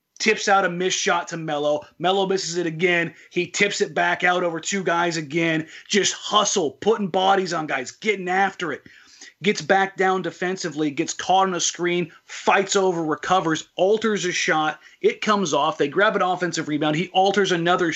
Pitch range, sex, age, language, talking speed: 165-205 Hz, male, 30-49, English, 185 wpm